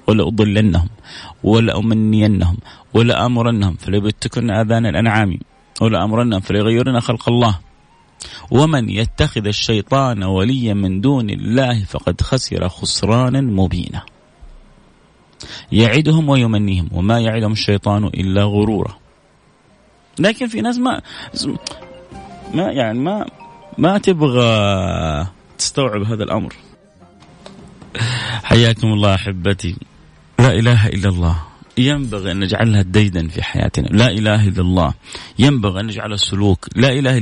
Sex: male